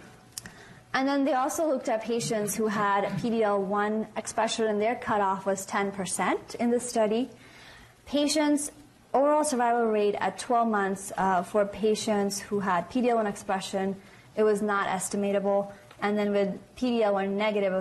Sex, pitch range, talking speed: female, 190-225 Hz, 145 wpm